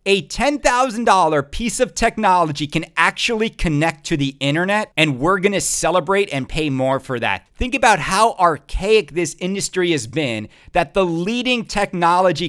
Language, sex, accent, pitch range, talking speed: English, male, American, 145-195 Hz, 160 wpm